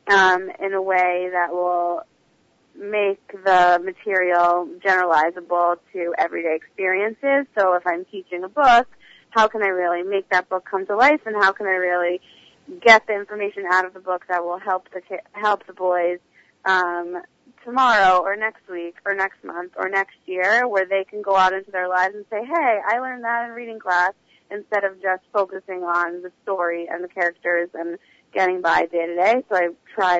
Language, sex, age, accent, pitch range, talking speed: English, female, 30-49, American, 175-205 Hz, 190 wpm